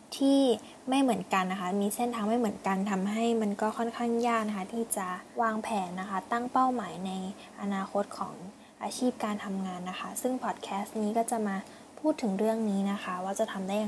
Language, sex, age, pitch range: Thai, female, 10-29, 195-235 Hz